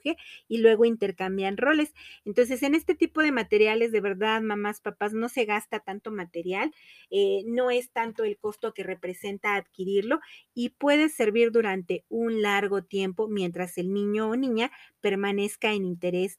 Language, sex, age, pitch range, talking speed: Spanish, female, 30-49, 195-245 Hz, 155 wpm